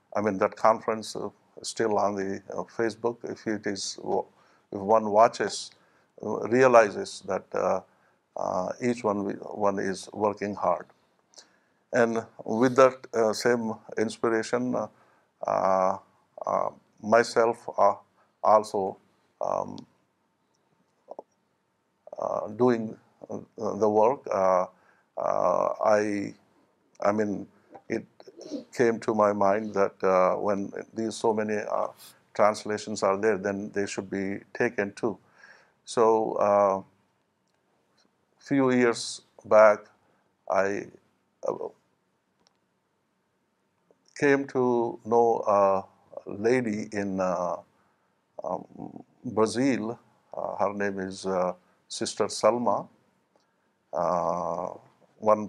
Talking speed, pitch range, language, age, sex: 100 wpm, 100-115 Hz, Urdu, 60-79, male